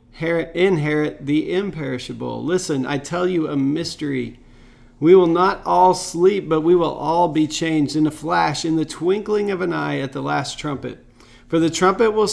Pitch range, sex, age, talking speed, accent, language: 130-170 Hz, male, 40-59, 180 wpm, American, English